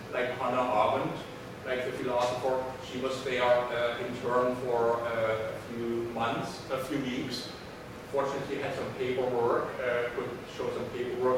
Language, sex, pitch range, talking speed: English, male, 120-135 Hz, 160 wpm